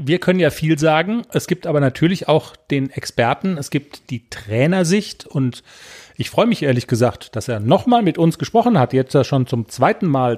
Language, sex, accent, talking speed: German, male, German, 200 wpm